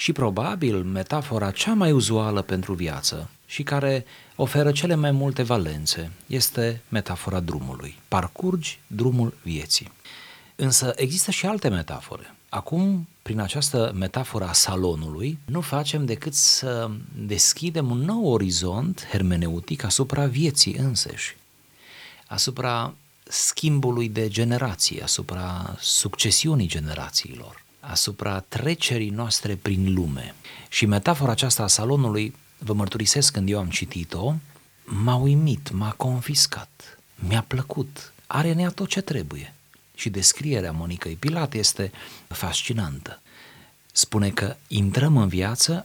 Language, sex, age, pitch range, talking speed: Romanian, male, 40-59, 95-140 Hz, 115 wpm